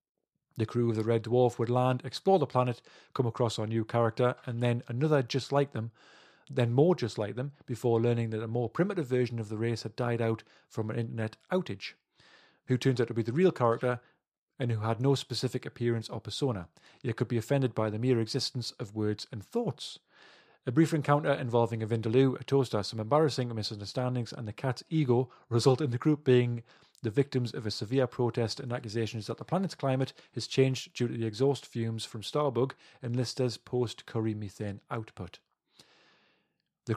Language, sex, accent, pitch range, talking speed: English, male, British, 115-130 Hz, 190 wpm